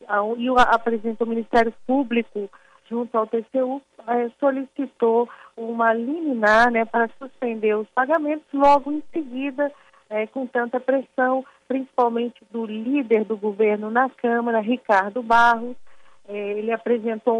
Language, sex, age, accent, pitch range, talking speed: Portuguese, female, 40-59, Brazilian, 220-265 Hz, 115 wpm